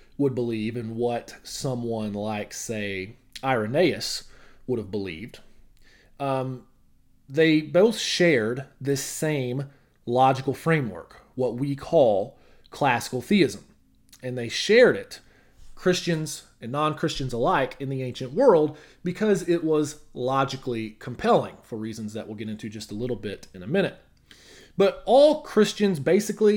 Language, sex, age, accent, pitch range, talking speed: English, male, 30-49, American, 120-160 Hz, 130 wpm